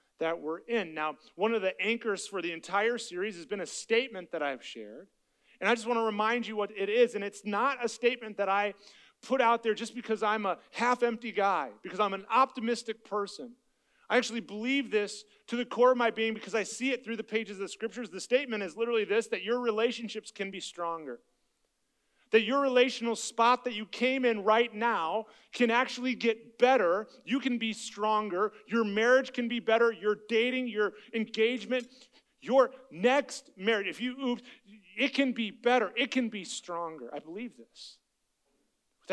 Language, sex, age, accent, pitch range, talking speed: English, male, 30-49, American, 195-240 Hz, 195 wpm